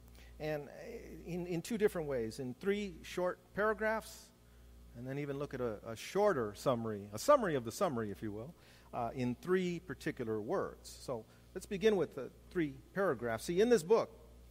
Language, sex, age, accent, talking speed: English, male, 50-69, American, 180 wpm